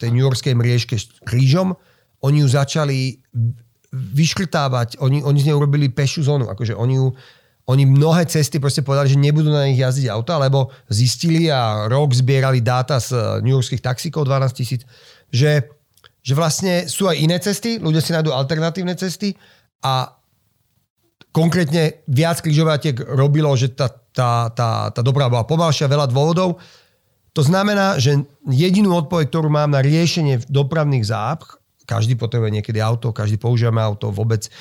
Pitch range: 120-150 Hz